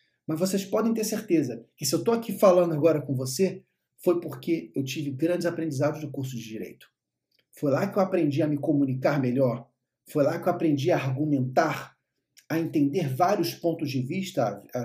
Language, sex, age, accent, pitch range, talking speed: Portuguese, male, 40-59, Brazilian, 135-175 Hz, 190 wpm